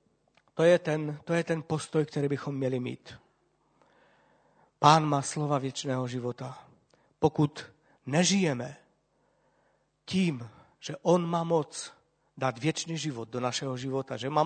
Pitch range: 135-175 Hz